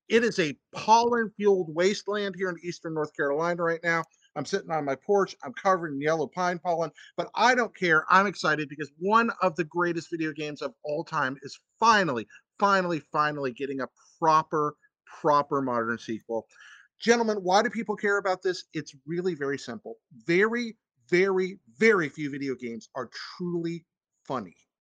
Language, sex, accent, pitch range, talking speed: English, male, American, 150-210 Hz, 165 wpm